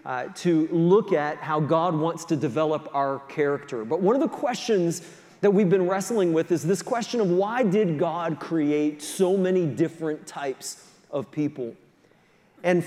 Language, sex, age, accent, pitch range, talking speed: English, male, 30-49, American, 170-215 Hz, 170 wpm